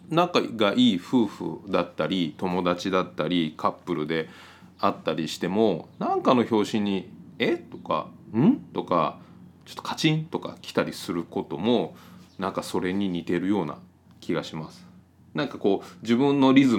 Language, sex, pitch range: Japanese, male, 85-120 Hz